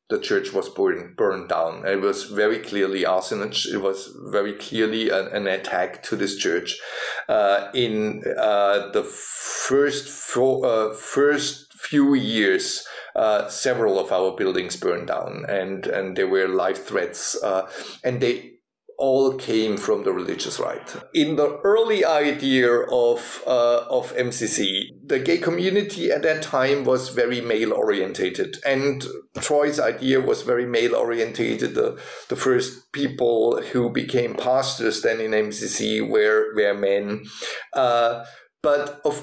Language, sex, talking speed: English, male, 140 wpm